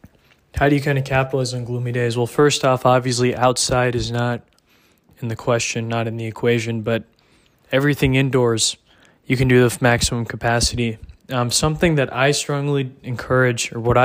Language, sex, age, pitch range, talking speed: English, male, 20-39, 120-135 Hz, 170 wpm